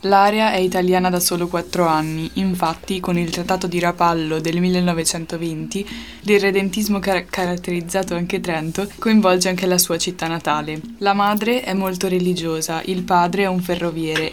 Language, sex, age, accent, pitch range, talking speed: Italian, female, 10-29, native, 170-195 Hz, 145 wpm